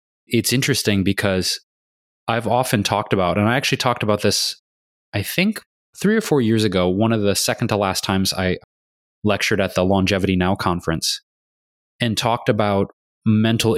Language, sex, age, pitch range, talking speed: English, male, 20-39, 90-105 Hz, 165 wpm